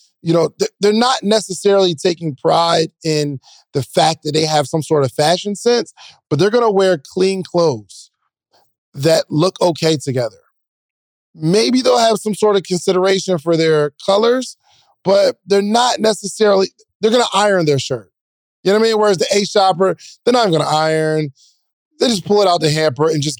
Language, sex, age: English, male, 20-39